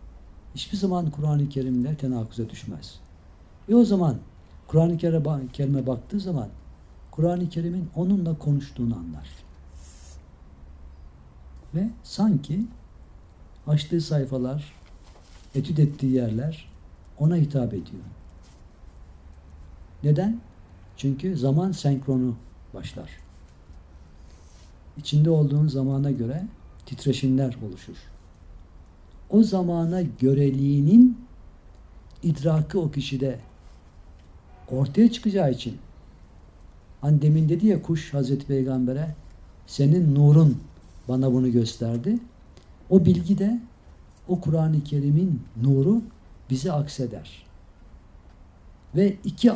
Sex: male